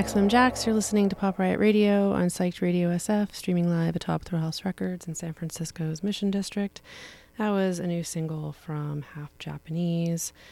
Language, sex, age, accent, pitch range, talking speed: English, female, 30-49, American, 165-195 Hz, 170 wpm